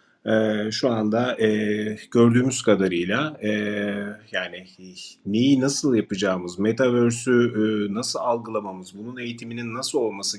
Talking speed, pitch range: 110 wpm, 105-130 Hz